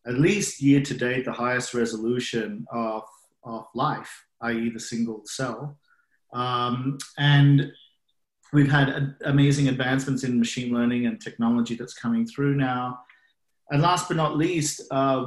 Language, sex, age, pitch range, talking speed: English, male, 40-59, 115-140 Hz, 140 wpm